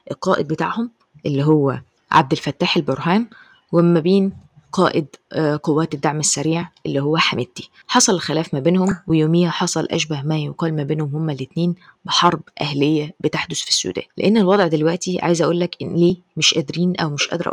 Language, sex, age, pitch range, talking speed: Arabic, female, 20-39, 150-180 Hz, 160 wpm